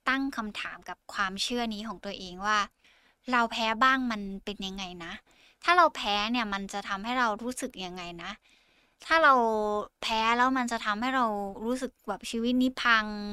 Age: 10-29